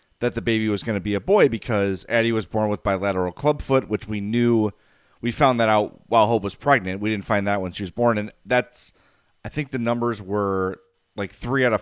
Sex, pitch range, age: male, 100-125 Hz, 30-49